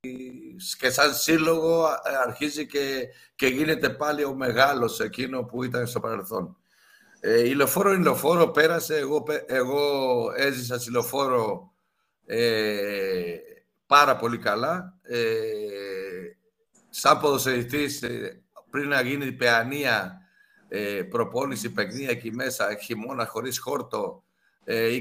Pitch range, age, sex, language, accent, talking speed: 125-165 Hz, 60-79, male, Greek, Spanish, 105 wpm